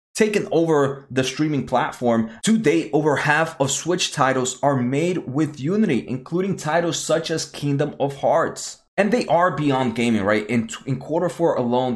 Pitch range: 120-155 Hz